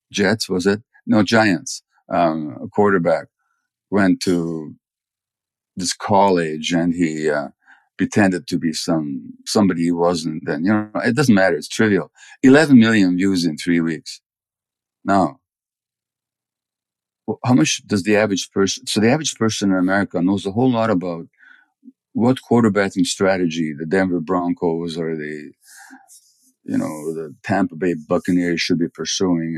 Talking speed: 145 wpm